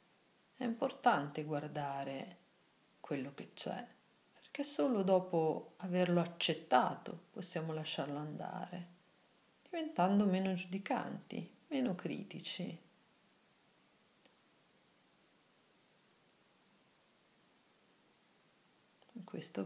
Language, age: Italian, 40-59